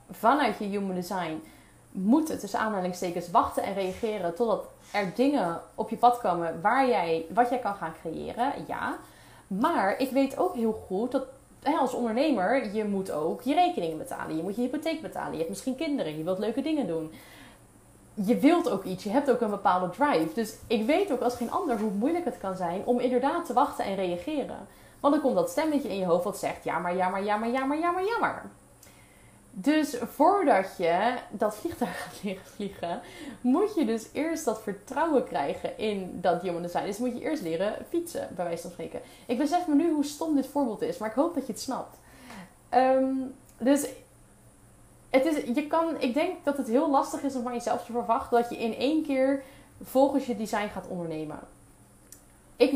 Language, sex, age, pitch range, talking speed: Dutch, female, 20-39, 195-275 Hz, 205 wpm